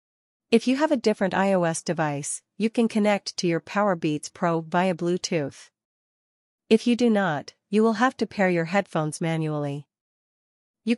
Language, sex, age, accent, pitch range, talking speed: English, female, 40-59, American, 160-205 Hz, 160 wpm